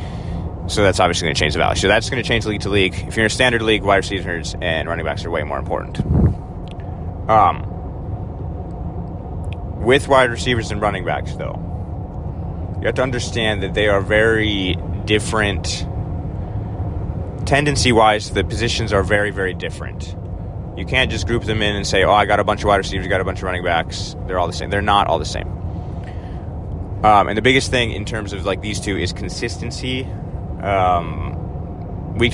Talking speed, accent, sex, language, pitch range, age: 185 wpm, American, male, English, 85-105 Hz, 30-49